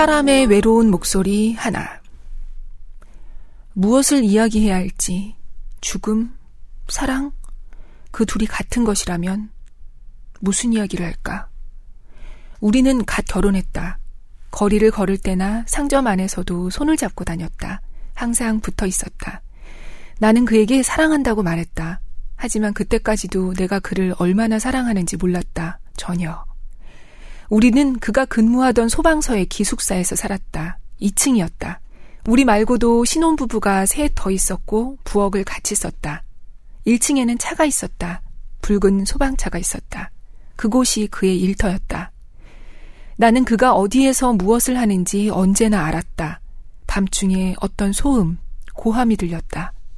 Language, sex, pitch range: Korean, female, 190-240 Hz